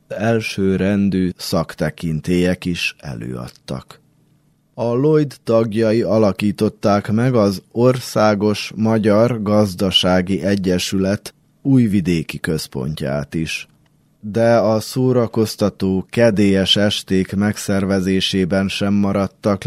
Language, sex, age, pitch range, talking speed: Hungarian, male, 20-39, 95-115 Hz, 80 wpm